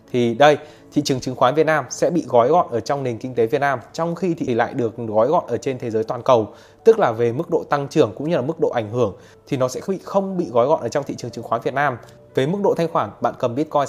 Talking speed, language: 300 wpm, Vietnamese